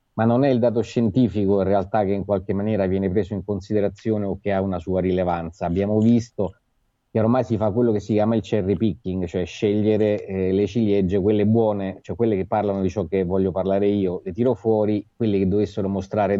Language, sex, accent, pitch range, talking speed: Italian, male, native, 95-110 Hz, 215 wpm